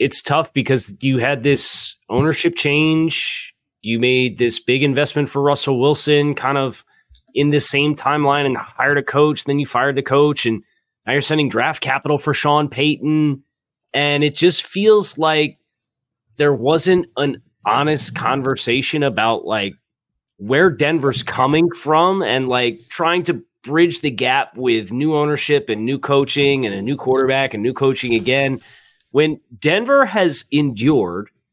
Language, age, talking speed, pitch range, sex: English, 20-39, 155 wpm, 130-155 Hz, male